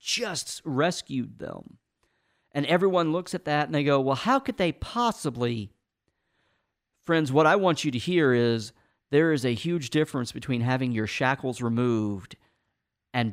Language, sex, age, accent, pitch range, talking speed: English, male, 50-69, American, 115-145 Hz, 160 wpm